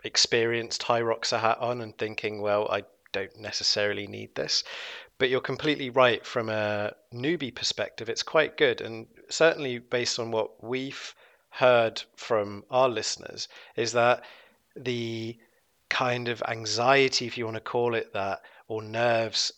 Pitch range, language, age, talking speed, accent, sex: 115-140 Hz, English, 30-49, 155 wpm, British, male